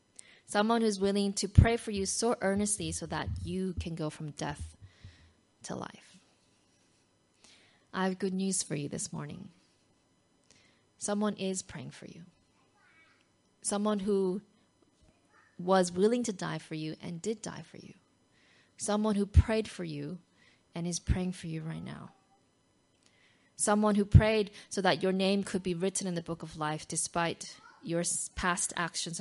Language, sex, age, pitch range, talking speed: English, female, 20-39, 165-210 Hz, 155 wpm